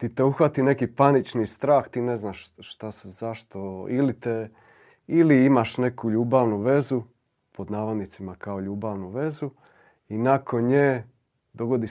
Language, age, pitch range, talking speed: Croatian, 30-49, 105-130 Hz, 135 wpm